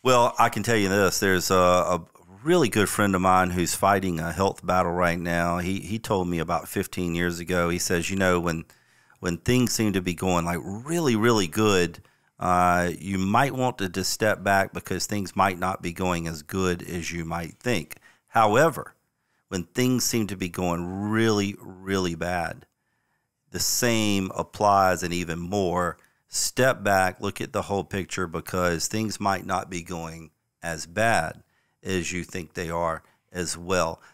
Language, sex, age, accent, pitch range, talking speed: English, male, 40-59, American, 85-100 Hz, 180 wpm